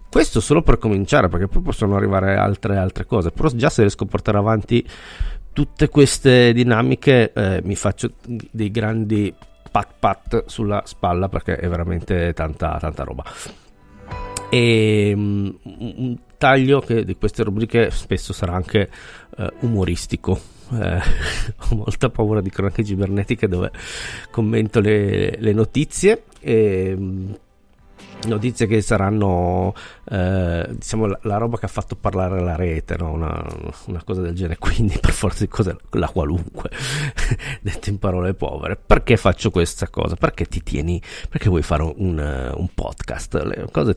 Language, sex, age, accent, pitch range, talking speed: Italian, male, 40-59, native, 90-115 Hz, 145 wpm